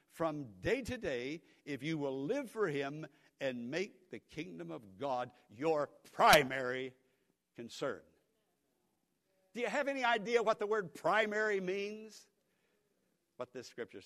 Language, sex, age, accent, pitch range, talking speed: English, male, 60-79, American, 100-145 Hz, 135 wpm